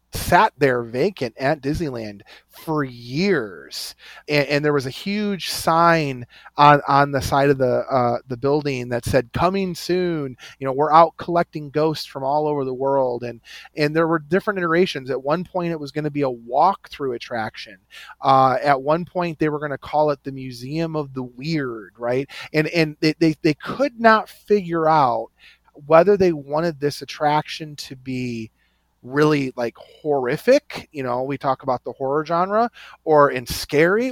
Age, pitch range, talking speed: 30-49, 135-175 Hz, 180 wpm